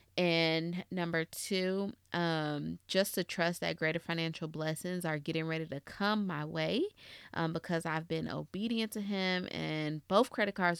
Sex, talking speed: female, 160 wpm